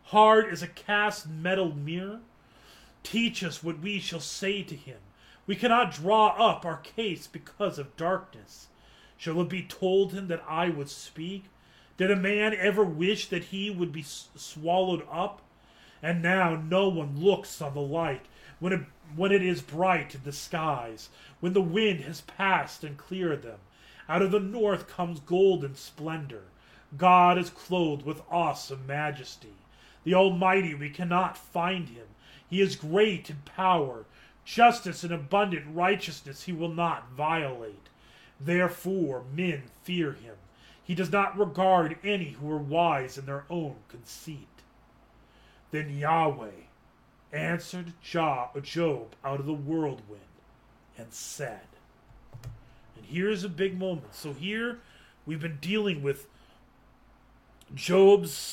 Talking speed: 145 wpm